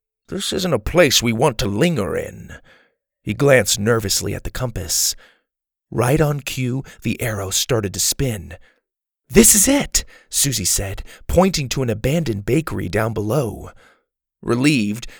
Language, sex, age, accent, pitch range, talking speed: English, male, 40-59, American, 110-150 Hz, 140 wpm